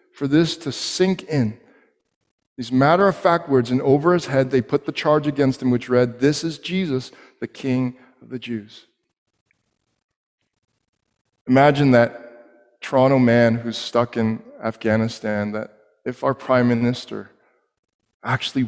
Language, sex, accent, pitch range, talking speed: English, male, American, 115-155 Hz, 135 wpm